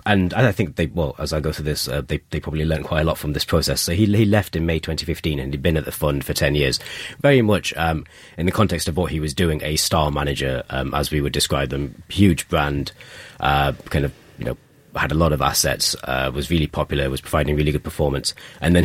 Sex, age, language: male, 30-49, English